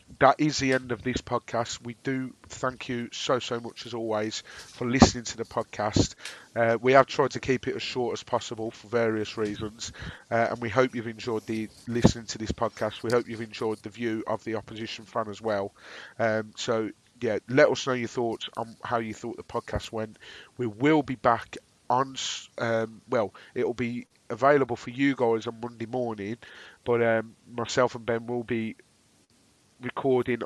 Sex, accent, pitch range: male, British, 110-125 Hz